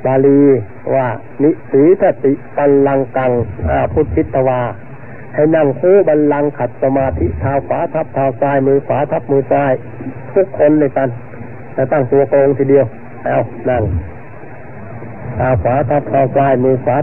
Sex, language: male, Thai